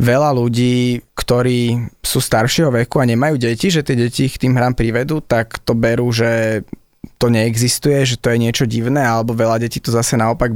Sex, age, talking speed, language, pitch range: male, 20-39, 190 wpm, Slovak, 120-140 Hz